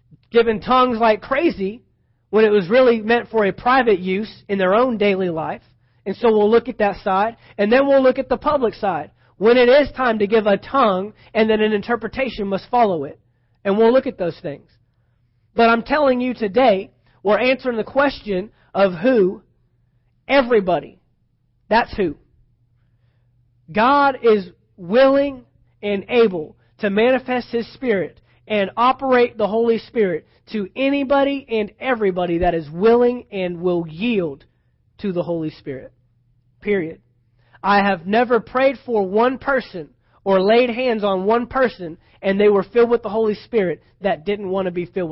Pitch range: 175-240 Hz